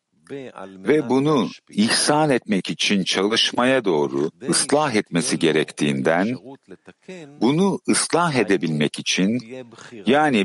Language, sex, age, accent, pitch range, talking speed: Hebrew, male, 60-79, Turkish, 100-150 Hz, 85 wpm